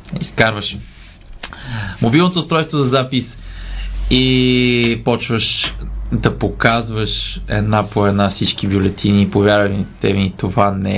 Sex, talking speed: male, 100 wpm